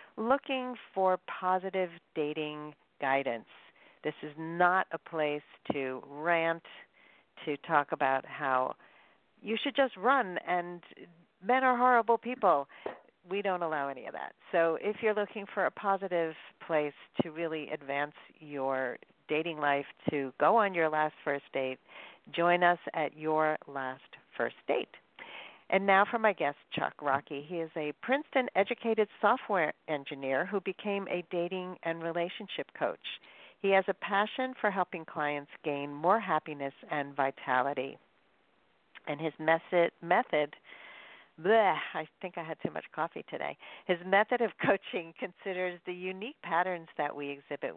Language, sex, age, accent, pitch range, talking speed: English, female, 50-69, American, 150-195 Hz, 145 wpm